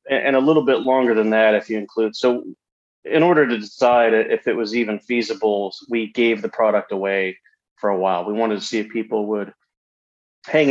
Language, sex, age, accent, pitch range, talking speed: English, male, 30-49, American, 100-120 Hz, 200 wpm